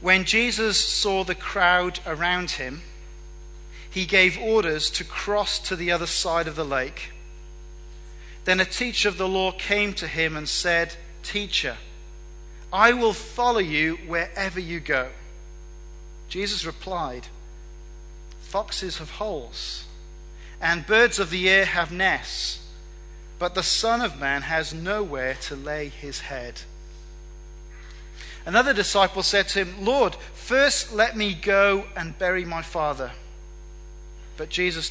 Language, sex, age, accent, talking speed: English, male, 40-59, British, 130 wpm